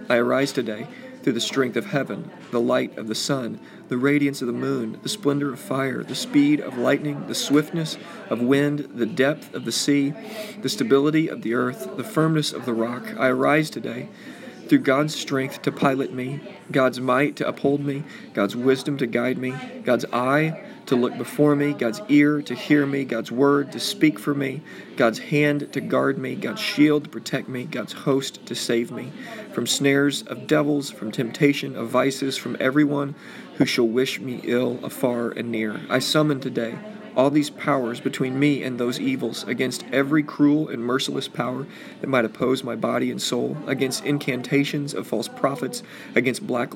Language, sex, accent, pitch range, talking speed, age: English, male, American, 125-145 Hz, 185 wpm, 40-59